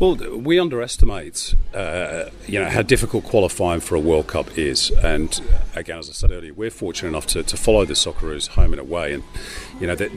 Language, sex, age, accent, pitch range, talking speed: English, male, 40-59, British, 95-125 Hz, 210 wpm